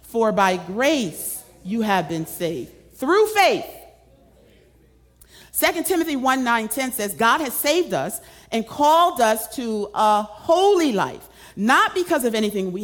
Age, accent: 40-59, American